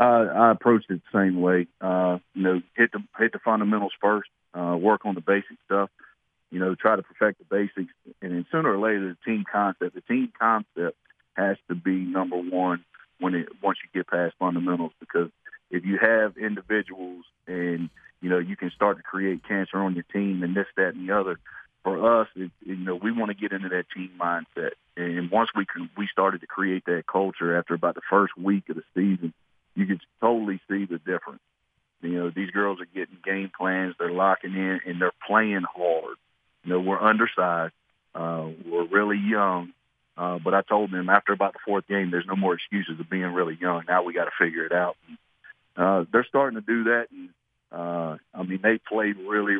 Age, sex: 40-59, male